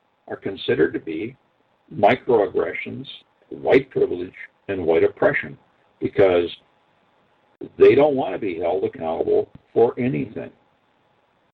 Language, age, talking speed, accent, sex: English, 60-79, 105 wpm, American, male